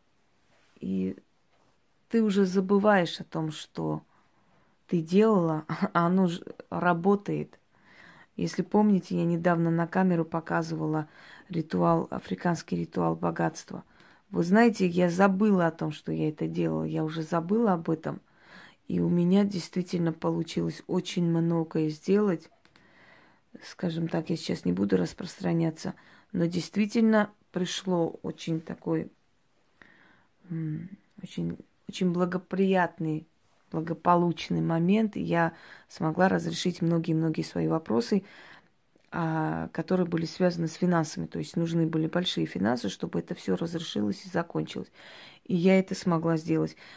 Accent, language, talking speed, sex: native, Russian, 120 wpm, female